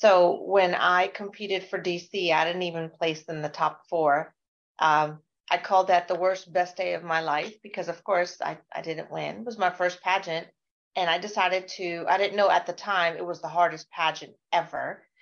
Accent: American